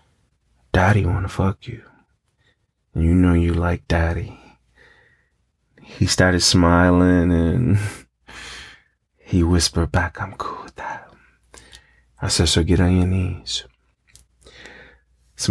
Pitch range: 85-95 Hz